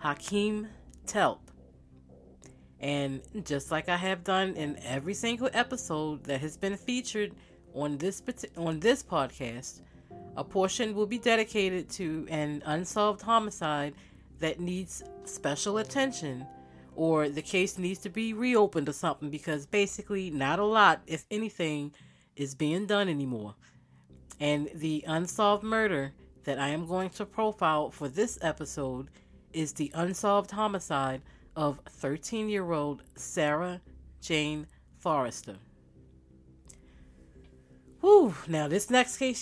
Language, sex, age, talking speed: English, female, 30-49, 125 wpm